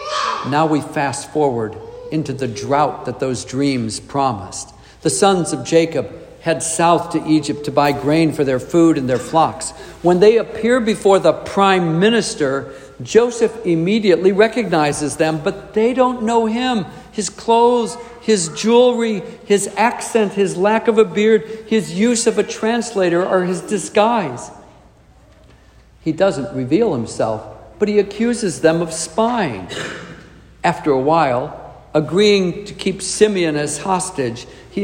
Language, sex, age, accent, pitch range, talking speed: English, male, 60-79, American, 150-220 Hz, 145 wpm